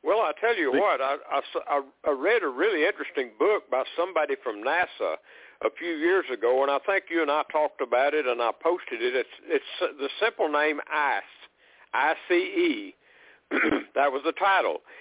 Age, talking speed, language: 60-79, 180 wpm, English